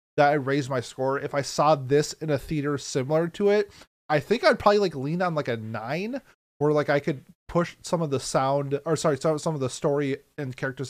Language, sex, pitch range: English, male, 130-160 Hz